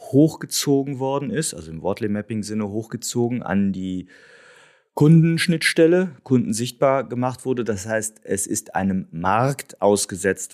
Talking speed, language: 120 wpm, German